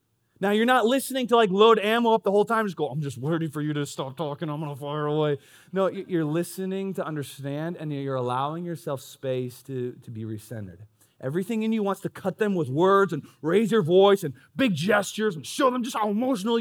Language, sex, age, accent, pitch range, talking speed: English, male, 30-49, American, 120-165 Hz, 230 wpm